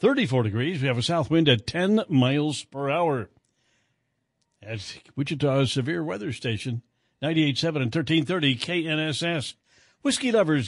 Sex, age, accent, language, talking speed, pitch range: male, 60-79, American, English, 130 wpm, 130-175 Hz